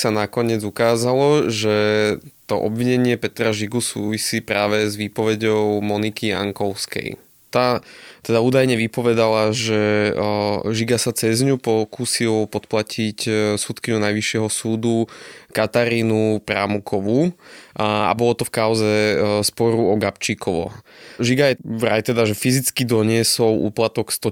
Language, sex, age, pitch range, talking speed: Slovak, male, 20-39, 105-120 Hz, 115 wpm